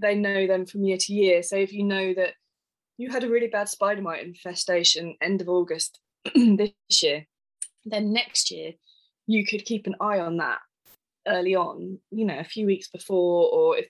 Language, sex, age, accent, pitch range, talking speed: English, female, 20-39, British, 185-220 Hz, 195 wpm